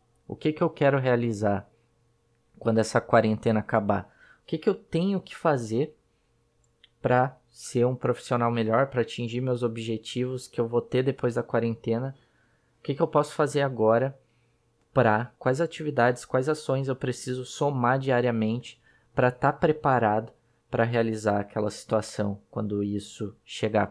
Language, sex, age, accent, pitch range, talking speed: Portuguese, male, 20-39, Brazilian, 110-135 Hz, 150 wpm